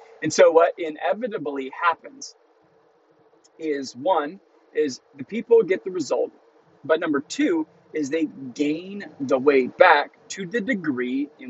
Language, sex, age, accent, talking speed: English, male, 30-49, American, 135 wpm